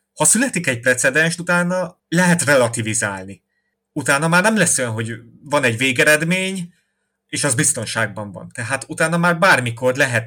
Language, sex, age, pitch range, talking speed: English, male, 30-49, 115-135 Hz, 145 wpm